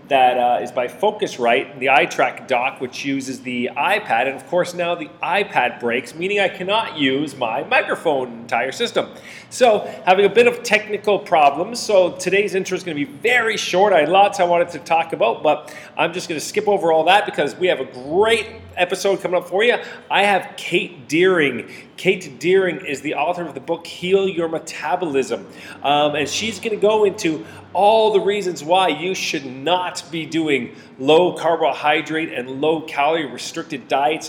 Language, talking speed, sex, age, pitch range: English, 190 wpm, male, 40-59, 155-205 Hz